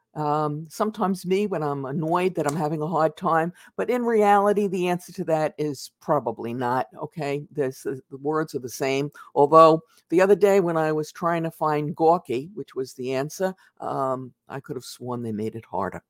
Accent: American